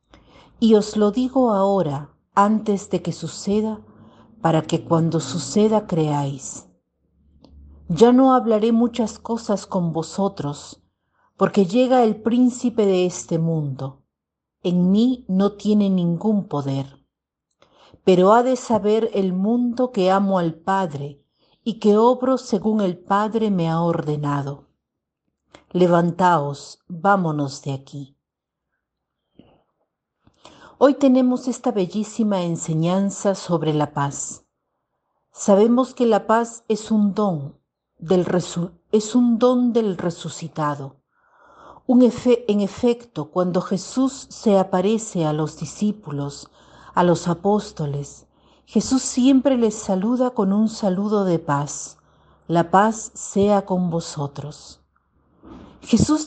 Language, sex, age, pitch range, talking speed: Spanish, female, 50-69, 165-225 Hz, 110 wpm